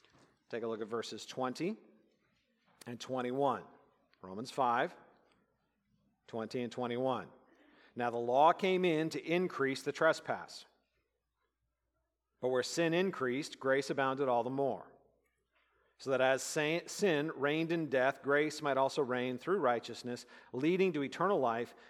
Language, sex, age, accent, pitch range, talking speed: English, male, 50-69, American, 120-160 Hz, 130 wpm